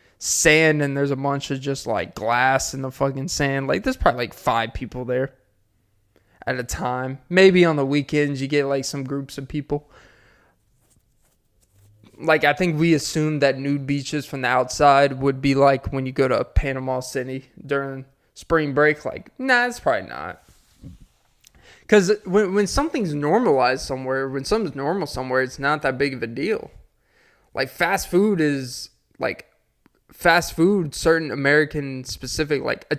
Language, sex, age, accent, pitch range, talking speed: English, male, 20-39, American, 130-160 Hz, 165 wpm